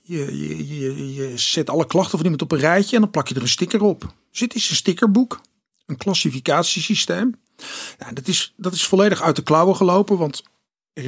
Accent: Dutch